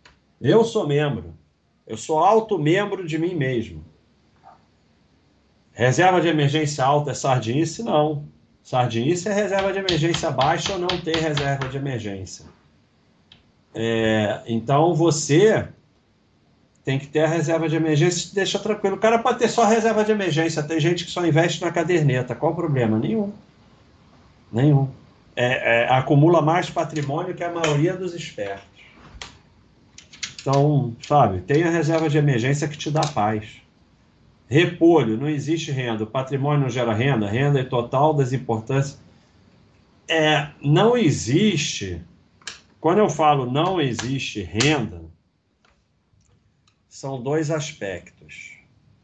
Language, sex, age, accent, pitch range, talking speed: Portuguese, male, 40-59, Brazilian, 115-165 Hz, 130 wpm